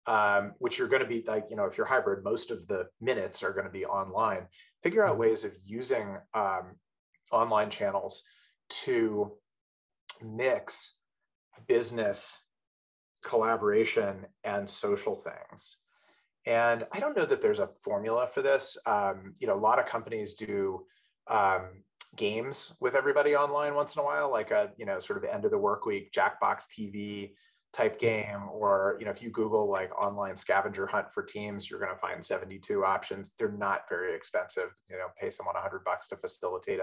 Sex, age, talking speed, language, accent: male, 30-49, 175 wpm, English, American